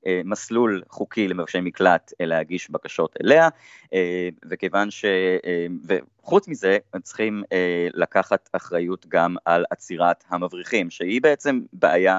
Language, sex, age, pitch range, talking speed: Hebrew, male, 30-49, 85-115 Hz, 100 wpm